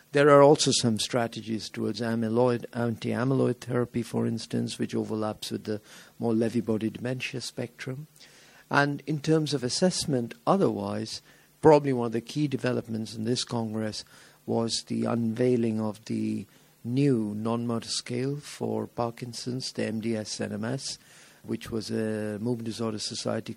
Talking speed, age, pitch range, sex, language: 135 wpm, 50-69, 110-125 Hz, male, English